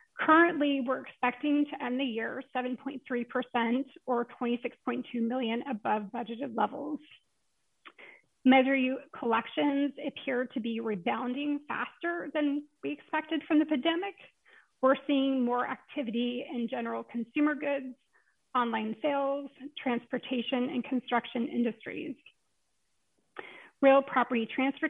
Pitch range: 235-280 Hz